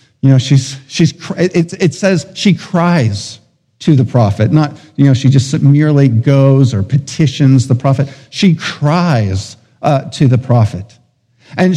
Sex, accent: male, American